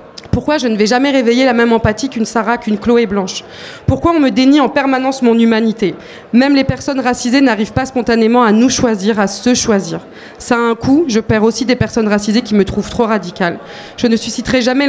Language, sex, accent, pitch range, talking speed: French, female, French, 215-260 Hz, 220 wpm